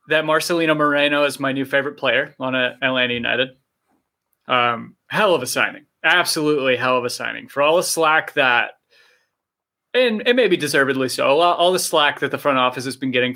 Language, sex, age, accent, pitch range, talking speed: English, male, 20-39, American, 125-155 Hz, 190 wpm